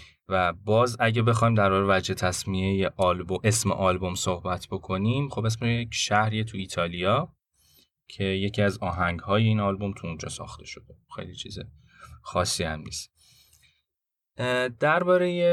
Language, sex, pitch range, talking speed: Persian, male, 90-120 Hz, 130 wpm